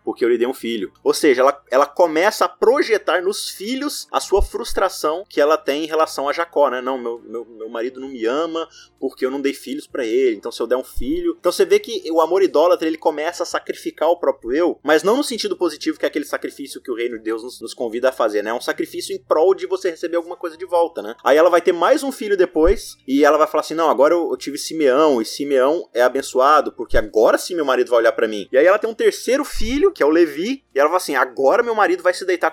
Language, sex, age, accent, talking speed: Portuguese, male, 20-39, Brazilian, 270 wpm